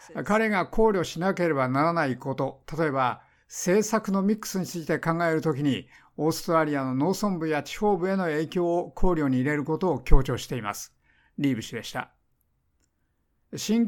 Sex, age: male, 50-69